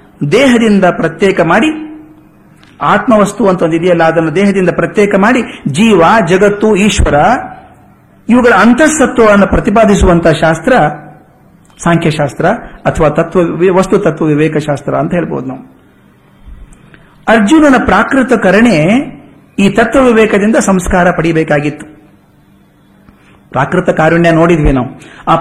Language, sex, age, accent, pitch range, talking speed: Kannada, male, 50-69, native, 160-215 Hz, 95 wpm